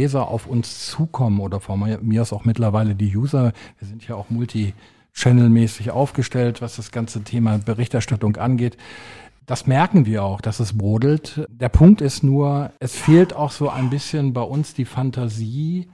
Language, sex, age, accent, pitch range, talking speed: German, male, 40-59, German, 115-140 Hz, 165 wpm